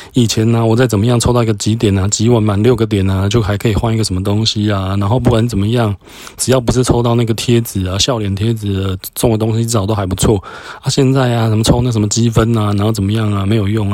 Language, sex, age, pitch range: Chinese, male, 20-39, 105-135 Hz